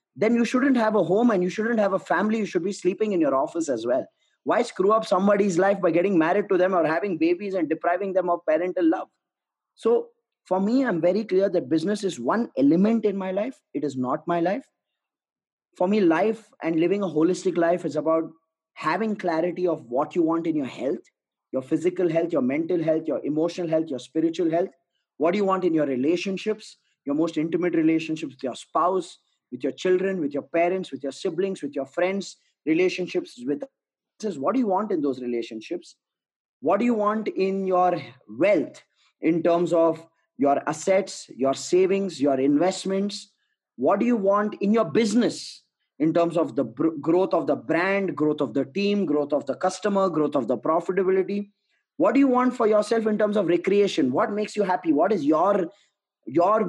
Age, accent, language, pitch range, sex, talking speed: 20-39, Indian, English, 165-210 Hz, male, 195 wpm